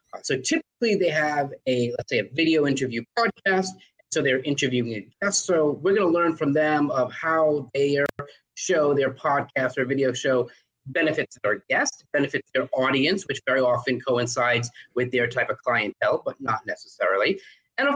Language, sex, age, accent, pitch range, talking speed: English, male, 30-49, American, 125-180 Hz, 175 wpm